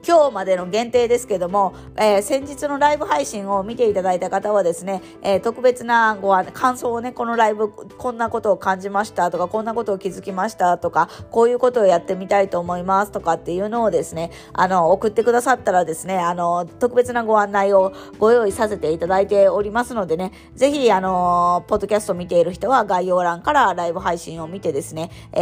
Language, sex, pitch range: Japanese, female, 180-235 Hz